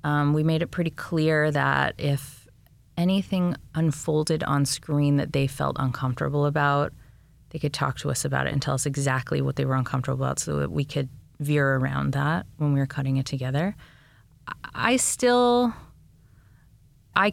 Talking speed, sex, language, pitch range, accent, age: 170 wpm, female, English, 130-165 Hz, American, 30-49